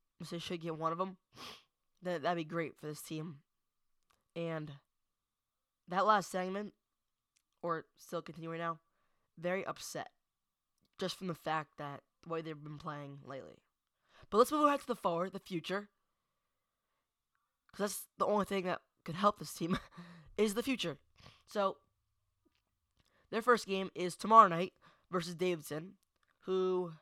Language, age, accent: English, 10-29, American